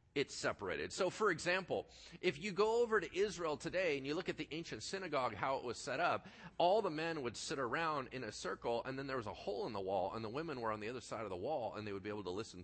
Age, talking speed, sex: 40-59, 285 wpm, male